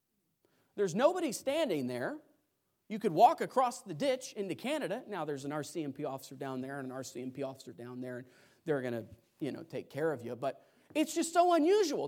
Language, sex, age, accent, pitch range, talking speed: English, male, 40-59, American, 155-215 Hz, 200 wpm